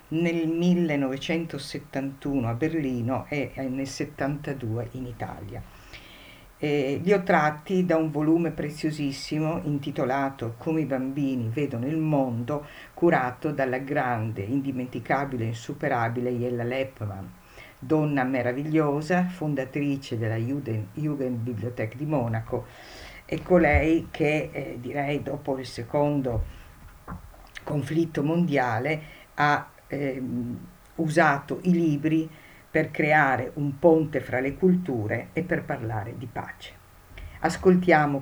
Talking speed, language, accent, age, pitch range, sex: 105 wpm, Italian, native, 50-69, 125-155 Hz, female